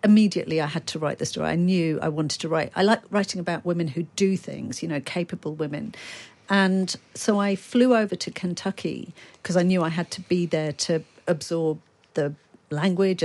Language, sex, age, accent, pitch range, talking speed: English, female, 50-69, British, 160-185 Hz, 200 wpm